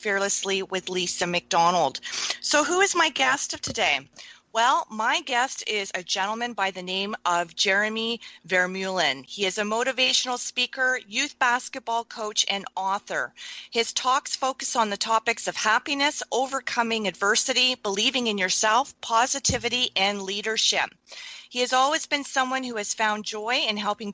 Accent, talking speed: American, 150 wpm